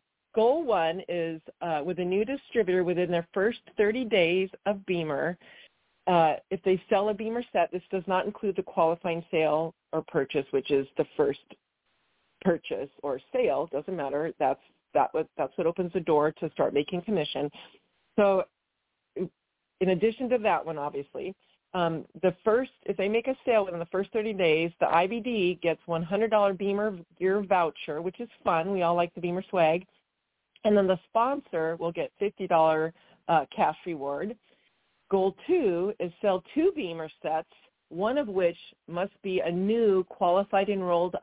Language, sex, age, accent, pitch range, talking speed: English, female, 40-59, American, 170-205 Hz, 165 wpm